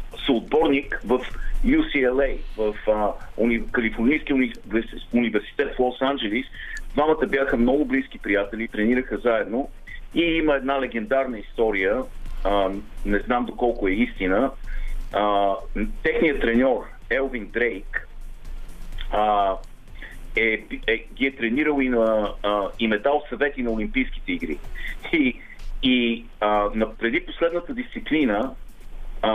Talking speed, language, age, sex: 110 wpm, Bulgarian, 40-59, male